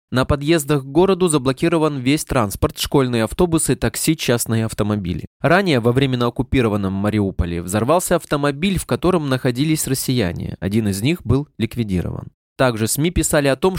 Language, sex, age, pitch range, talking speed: Russian, male, 20-39, 115-155 Hz, 145 wpm